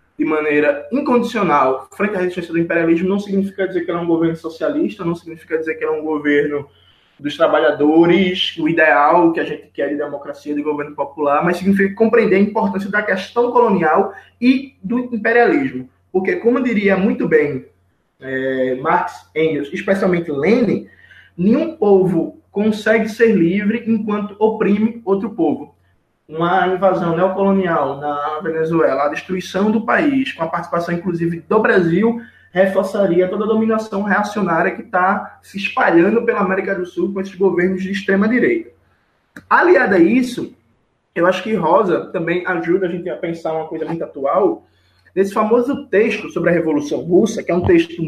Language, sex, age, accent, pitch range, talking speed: Portuguese, male, 20-39, Brazilian, 155-210 Hz, 160 wpm